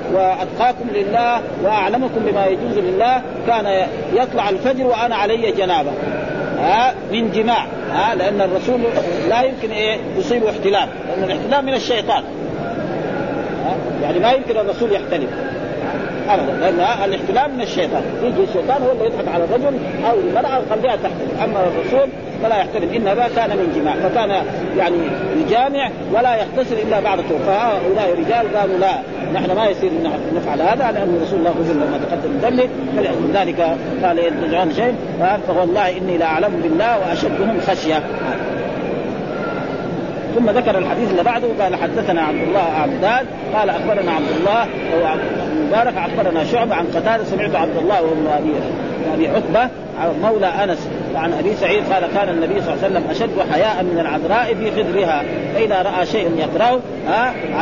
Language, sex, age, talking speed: Arabic, male, 50-69, 145 wpm